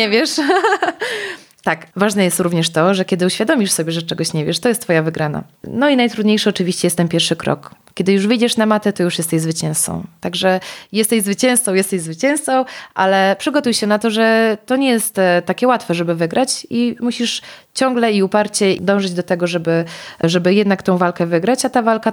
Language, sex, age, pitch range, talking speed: Polish, female, 20-39, 175-215 Hz, 195 wpm